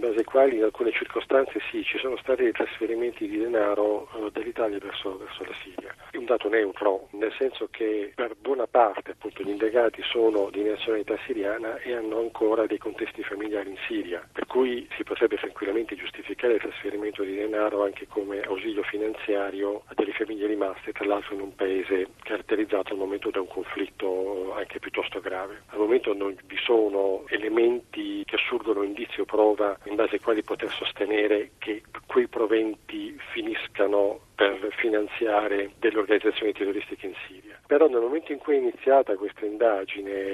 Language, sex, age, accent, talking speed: Italian, male, 40-59, native, 170 wpm